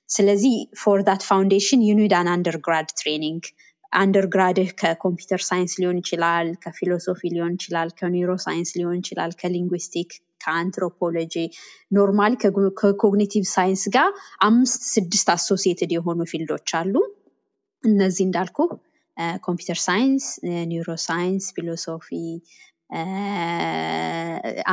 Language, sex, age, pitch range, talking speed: Amharic, female, 20-39, 175-210 Hz, 80 wpm